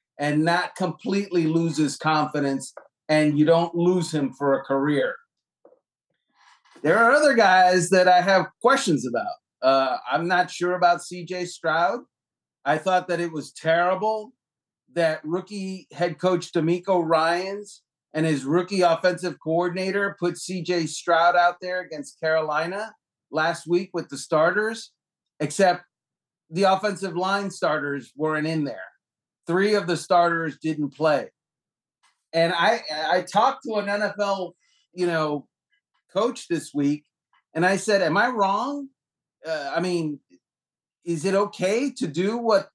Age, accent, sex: 40-59, American, male